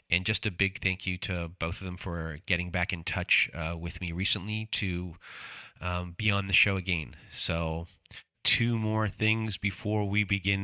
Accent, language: American, English